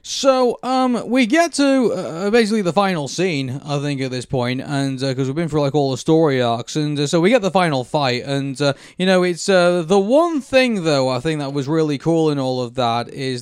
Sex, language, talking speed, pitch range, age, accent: male, English, 245 wpm, 130-155 Hz, 20-39, British